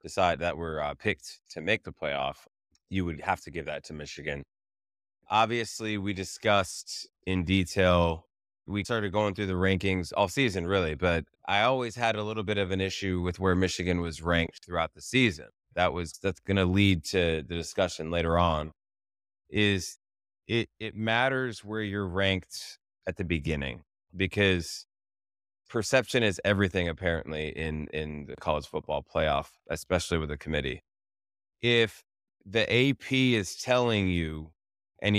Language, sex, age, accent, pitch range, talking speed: English, male, 20-39, American, 85-110 Hz, 155 wpm